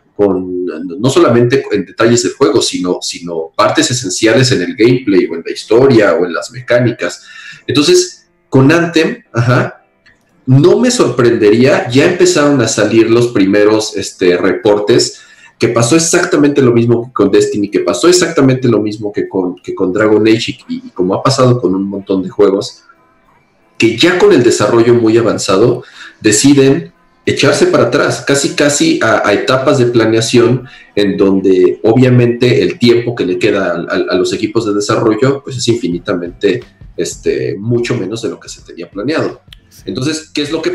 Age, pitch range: 40-59, 105-135 Hz